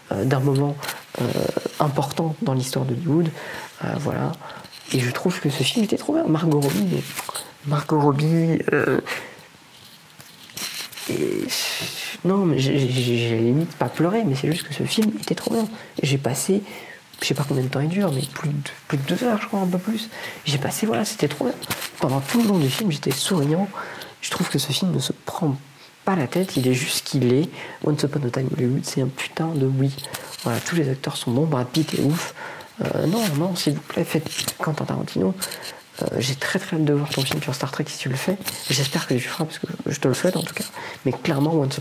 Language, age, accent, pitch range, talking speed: French, 40-59, French, 135-170 Hz, 230 wpm